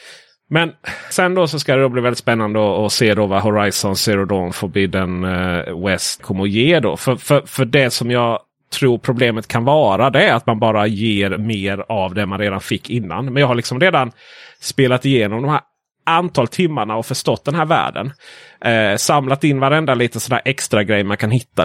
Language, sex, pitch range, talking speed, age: Swedish, male, 110-160 Hz, 200 wpm, 30-49